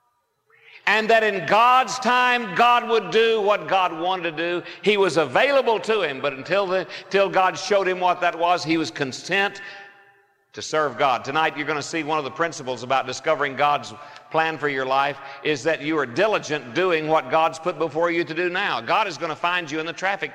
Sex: male